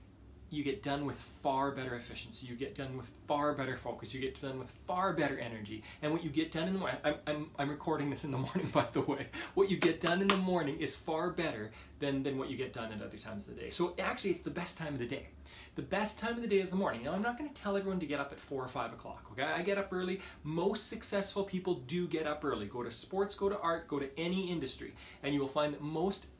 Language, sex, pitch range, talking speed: English, male, 120-185 Hz, 275 wpm